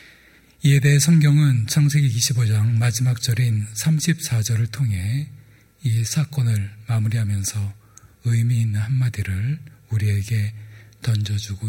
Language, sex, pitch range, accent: Korean, male, 105-130 Hz, native